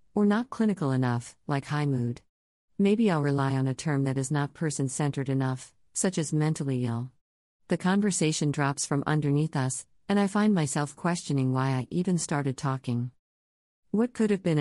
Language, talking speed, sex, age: English, 175 wpm, female, 50-69